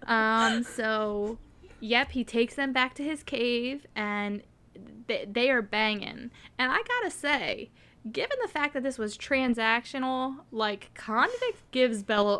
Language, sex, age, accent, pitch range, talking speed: English, female, 10-29, American, 210-255 Hz, 145 wpm